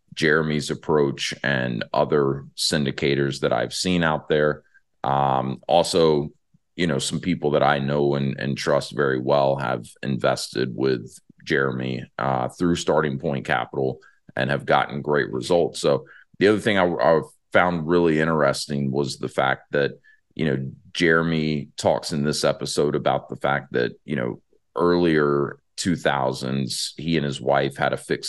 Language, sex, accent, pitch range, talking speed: English, male, American, 70-75 Hz, 155 wpm